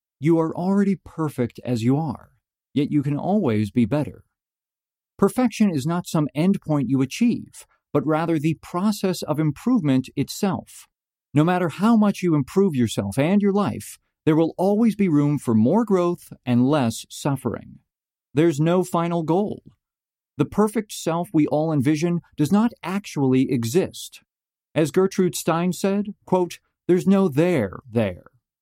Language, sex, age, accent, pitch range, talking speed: English, male, 40-59, American, 130-185 Hz, 150 wpm